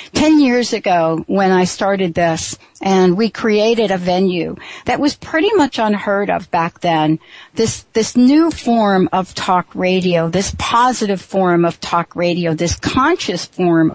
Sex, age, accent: female, 60-79, American